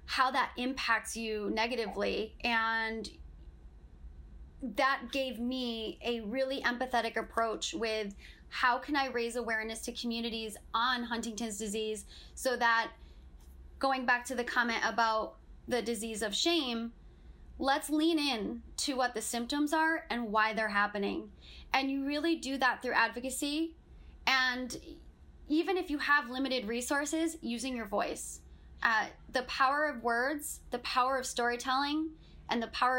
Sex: female